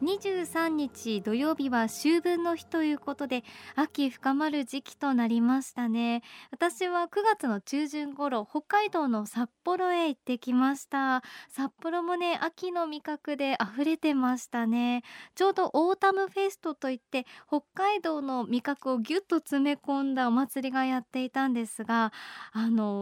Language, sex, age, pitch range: Japanese, male, 20-39, 240-330 Hz